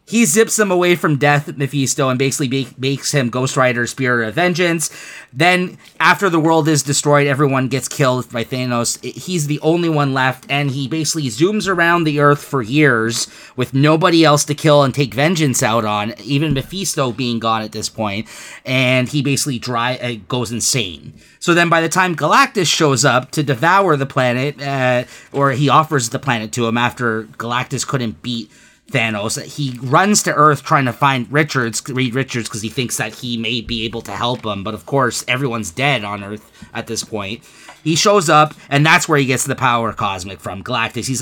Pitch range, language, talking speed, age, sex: 125-160 Hz, English, 200 wpm, 30-49, male